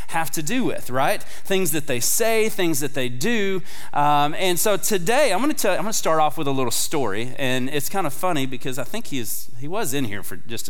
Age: 30-49